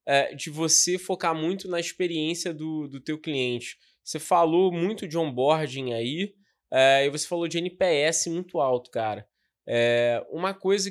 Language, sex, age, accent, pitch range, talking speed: Portuguese, male, 20-39, Brazilian, 130-170 Hz, 145 wpm